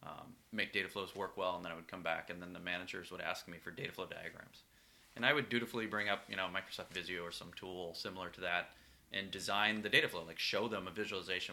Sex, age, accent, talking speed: male, 20-39, American, 255 wpm